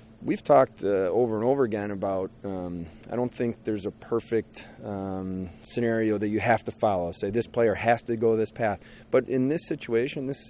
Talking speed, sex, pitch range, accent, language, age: 200 wpm, male, 110-120 Hz, American, English, 30-49